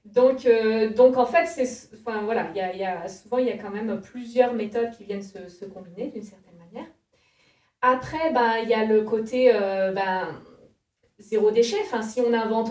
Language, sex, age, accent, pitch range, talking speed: French, female, 20-39, French, 205-255 Hz, 205 wpm